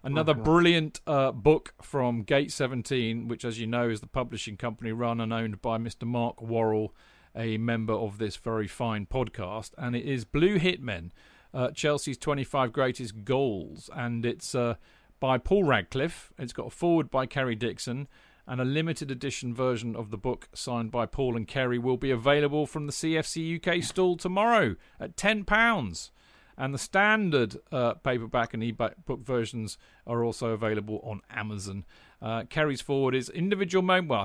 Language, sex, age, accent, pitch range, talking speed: English, male, 40-59, British, 115-145 Hz, 170 wpm